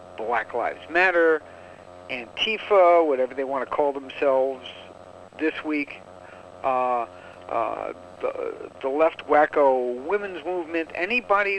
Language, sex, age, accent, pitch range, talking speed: English, male, 60-79, American, 130-205 Hz, 110 wpm